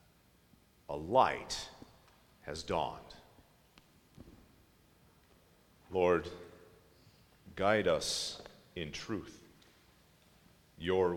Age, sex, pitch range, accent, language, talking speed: 50-69, male, 100-145 Hz, American, English, 55 wpm